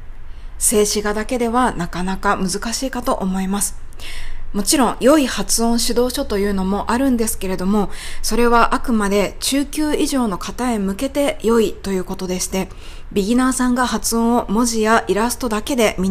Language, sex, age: Japanese, female, 20-39